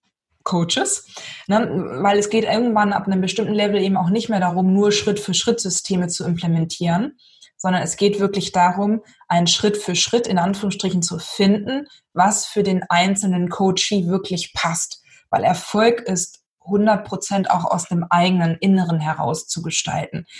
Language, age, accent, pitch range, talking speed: German, 20-39, German, 180-210 Hz, 145 wpm